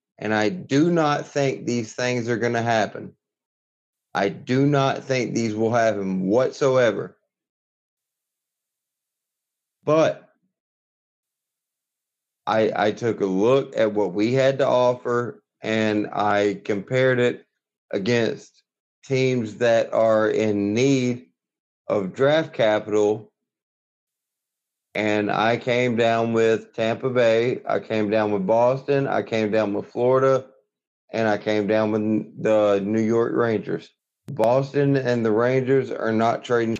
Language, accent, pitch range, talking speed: English, American, 110-135 Hz, 125 wpm